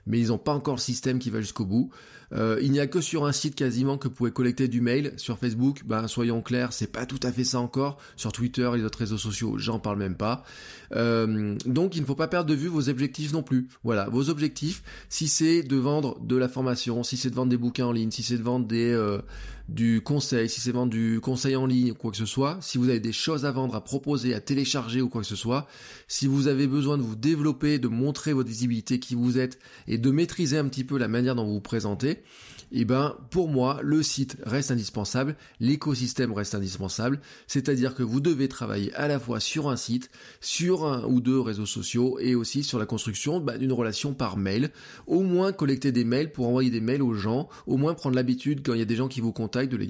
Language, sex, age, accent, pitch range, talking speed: French, male, 20-39, French, 115-140 Hz, 245 wpm